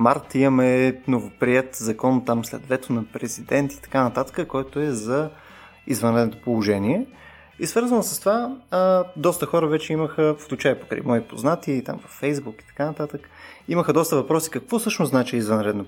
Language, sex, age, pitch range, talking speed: Bulgarian, male, 20-39, 125-155 Hz, 165 wpm